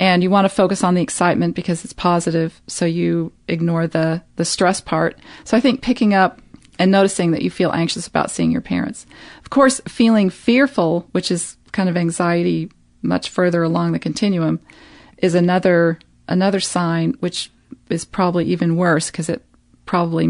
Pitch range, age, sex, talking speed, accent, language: 160-185 Hz, 40-59, female, 175 wpm, American, English